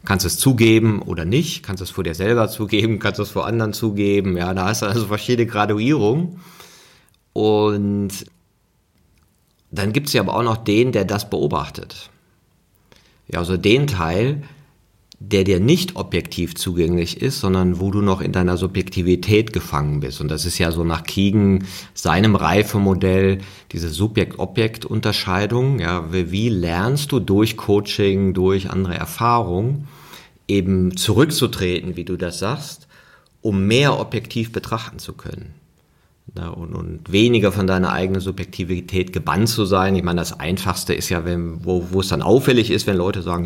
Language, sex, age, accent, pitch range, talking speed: German, male, 40-59, German, 90-110 Hz, 155 wpm